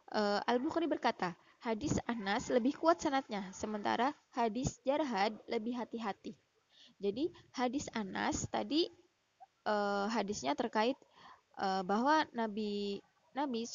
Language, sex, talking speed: Indonesian, female, 100 wpm